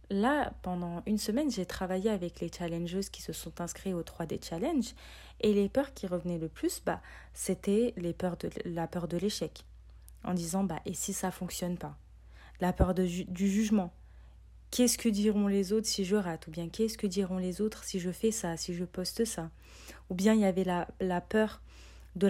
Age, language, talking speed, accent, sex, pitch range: 30-49, French, 215 wpm, French, female, 170-215 Hz